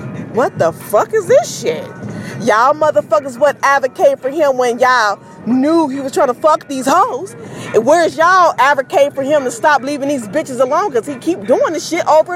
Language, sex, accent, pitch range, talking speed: English, female, American, 215-305 Hz, 200 wpm